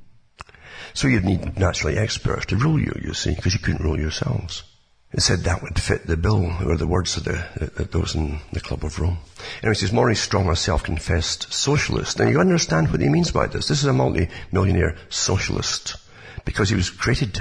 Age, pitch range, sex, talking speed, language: 60-79, 80-105 Hz, male, 200 wpm, English